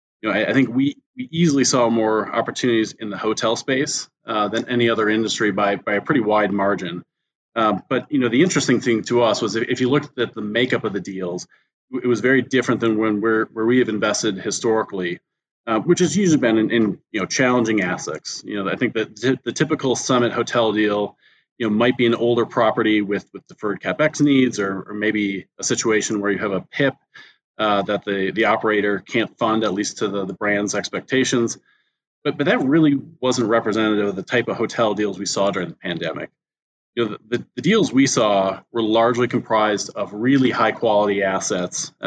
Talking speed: 210 wpm